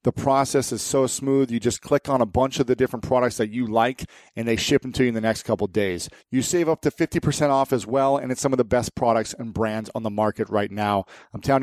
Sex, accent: male, American